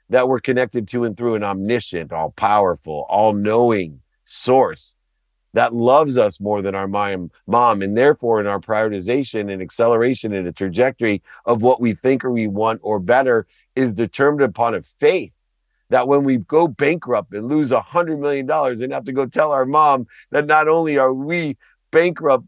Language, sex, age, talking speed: English, male, 50-69, 175 wpm